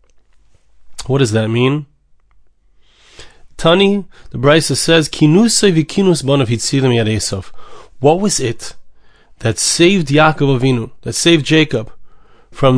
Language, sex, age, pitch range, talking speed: English, male, 30-49, 120-155 Hz, 110 wpm